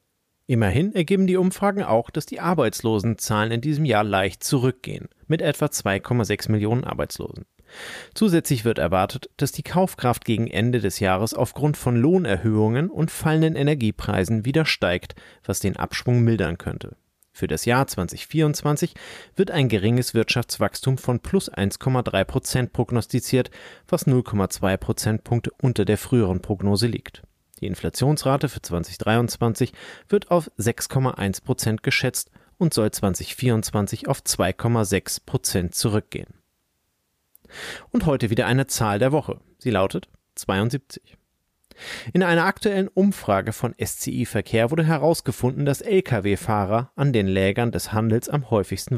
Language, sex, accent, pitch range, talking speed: German, male, German, 100-140 Hz, 125 wpm